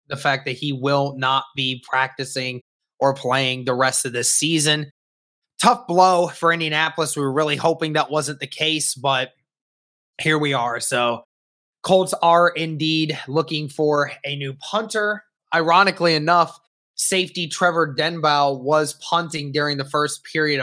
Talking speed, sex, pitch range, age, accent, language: 150 wpm, male, 140-170 Hz, 20-39, American, English